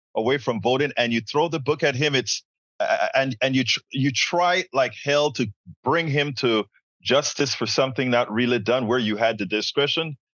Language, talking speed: English, 200 wpm